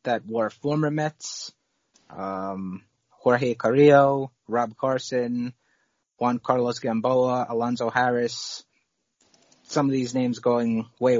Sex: male